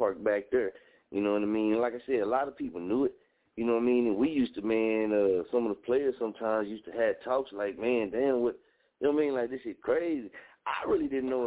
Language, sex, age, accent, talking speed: English, male, 30-49, American, 275 wpm